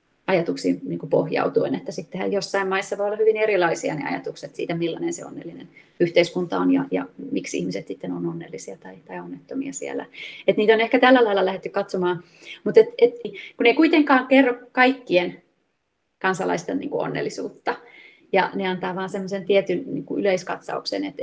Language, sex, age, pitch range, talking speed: Finnish, female, 30-49, 185-250 Hz, 165 wpm